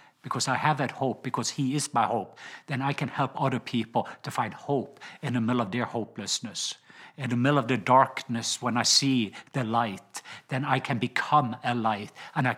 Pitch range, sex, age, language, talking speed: 120-145 Hz, male, 50-69, English, 210 wpm